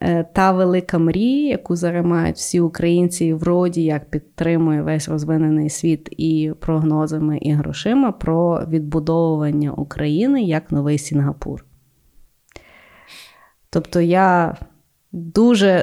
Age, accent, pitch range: 20-39, native, 160-190 Hz